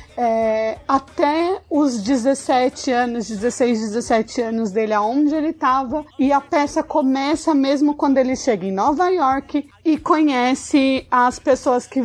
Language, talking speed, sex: Portuguese, 140 wpm, female